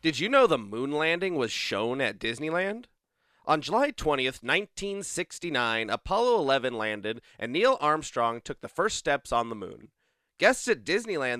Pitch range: 125-190 Hz